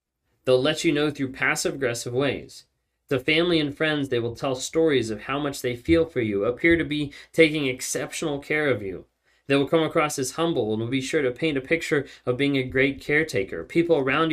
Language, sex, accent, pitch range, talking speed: English, male, American, 110-140 Hz, 215 wpm